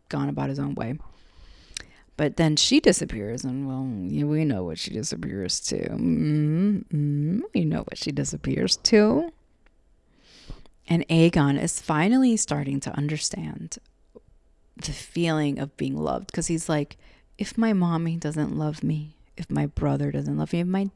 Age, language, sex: 30-49, English, female